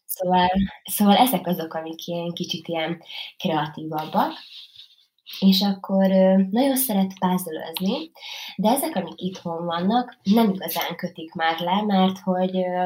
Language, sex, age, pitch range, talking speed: Hungarian, female, 20-39, 165-200 Hz, 120 wpm